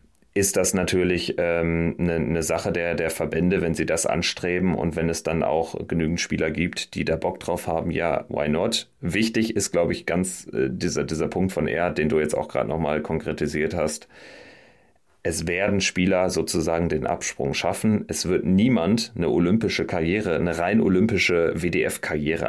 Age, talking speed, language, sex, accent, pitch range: 30-49, 175 wpm, German, male, German, 75-90 Hz